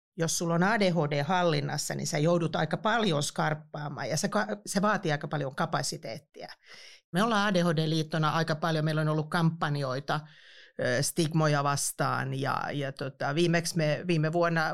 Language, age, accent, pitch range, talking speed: Finnish, 40-59, native, 150-170 Hz, 145 wpm